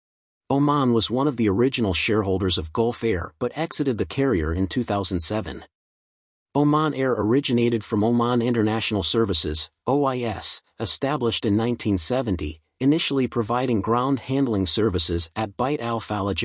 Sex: male